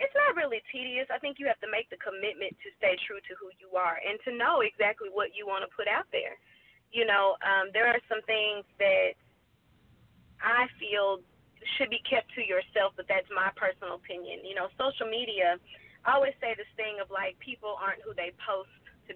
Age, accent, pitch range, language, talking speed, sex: 30-49, American, 195-275 Hz, English, 210 wpm, female